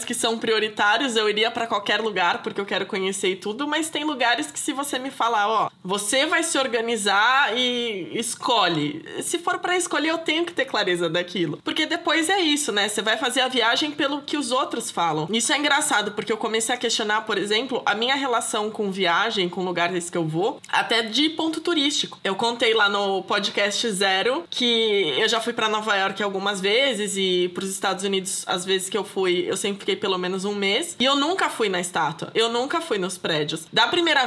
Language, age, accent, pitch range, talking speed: Portuguese, 20-39, Brazilian, 205-325 Hz, 210 wpm